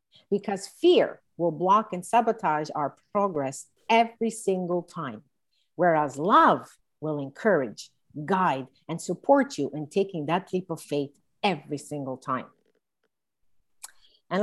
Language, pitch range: English, 150-205 Hz